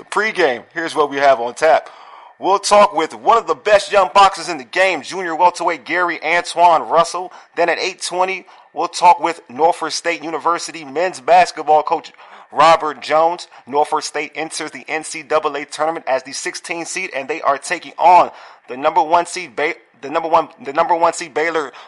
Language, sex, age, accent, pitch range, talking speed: English, male, 30-49, American, 145-175 Hz, 180 wpm